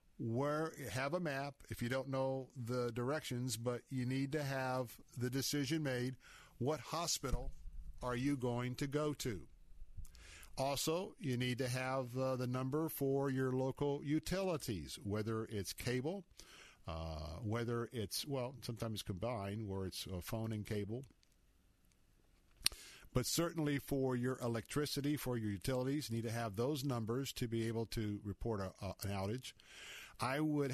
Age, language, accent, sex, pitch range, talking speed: 50-69, English, American, male, 115-140 Hz, 150 wpm